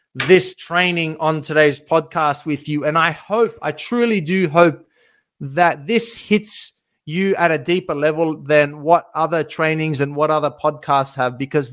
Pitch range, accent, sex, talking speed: 150-185 Hz, Australian, male, 165 wpm